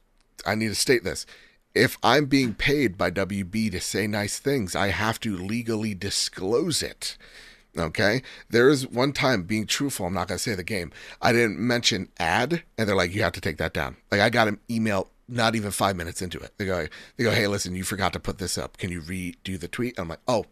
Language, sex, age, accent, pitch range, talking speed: English, male, 30-49, American, 95-125 Hz, 230 wpm